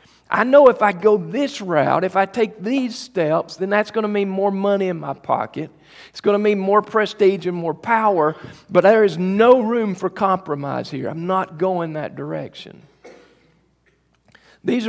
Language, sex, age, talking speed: English, male, 50-69, 180 wpm